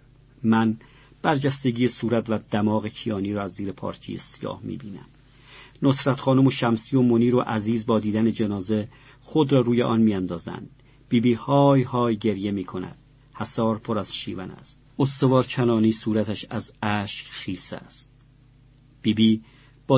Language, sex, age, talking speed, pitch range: Persian, male, 50-69, 140 wpm, 105-130 Hz